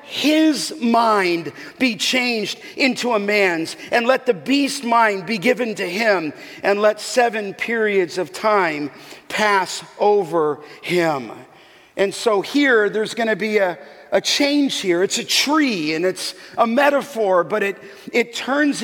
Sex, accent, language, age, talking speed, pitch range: male, American, English, 50-69, 150 wpm, 205-280 Hz